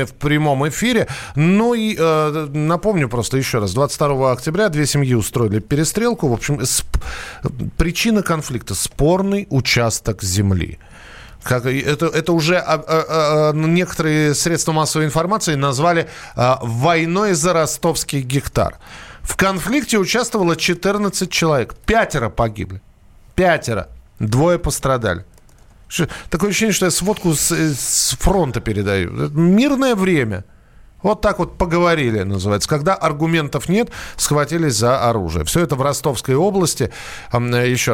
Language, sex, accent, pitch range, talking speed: Russian, male, native, 120-175 Hz, 115 wpm